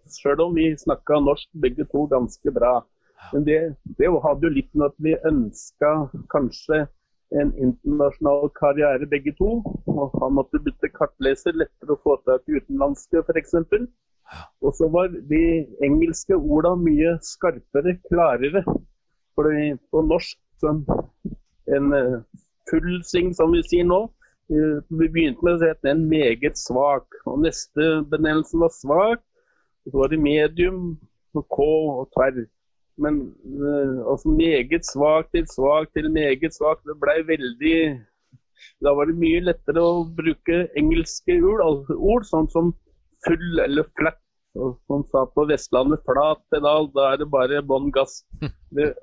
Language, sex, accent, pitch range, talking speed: English, male, Norwegian, 145-170 Hz, 145 wpm